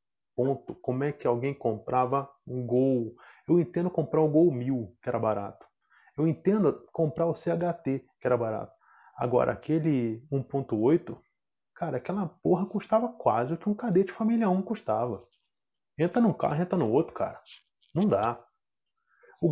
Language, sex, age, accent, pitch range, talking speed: Portuguese, male, 20-39, Brazilian, 130-175 Hz, 155 wpm